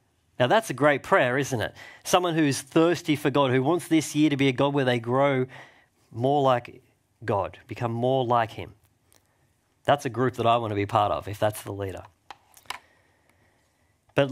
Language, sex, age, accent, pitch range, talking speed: English, male, 40-59, Australian, 110-140 Hz, 190 wpm